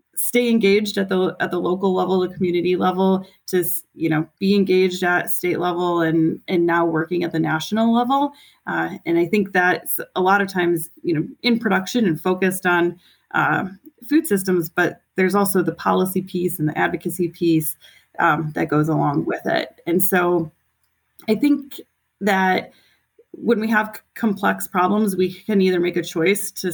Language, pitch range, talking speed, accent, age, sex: English, 170-210 Hz, 180 wpm, American, 30-49, female